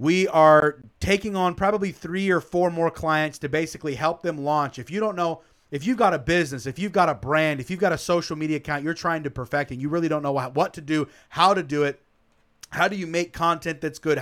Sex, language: male, English